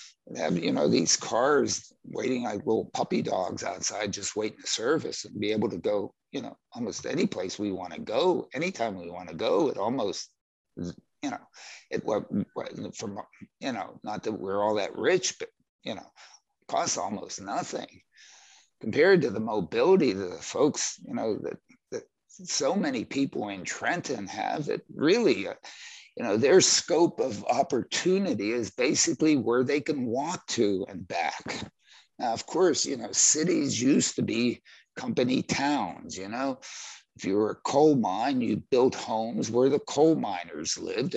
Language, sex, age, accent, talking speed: English, male, 60-79, American, 170 wpm